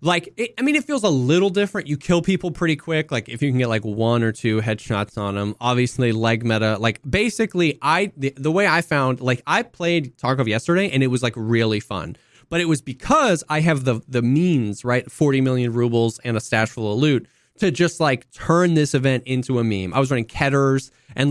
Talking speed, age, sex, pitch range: 230 wpm, 20-39, male, 115-150 Hz